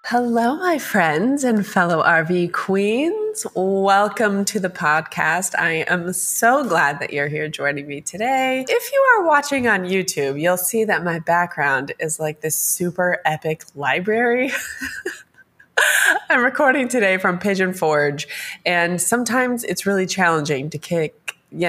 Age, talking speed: 20-39, 145 wpm